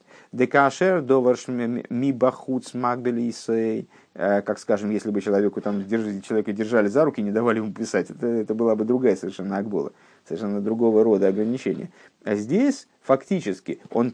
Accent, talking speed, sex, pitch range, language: native, 125 wpm, male, 105-140 Hz, Russian